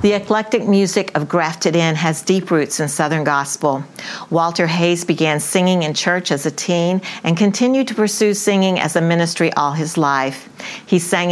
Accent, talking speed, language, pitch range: American, 180 wpm, English, 155-185 Hz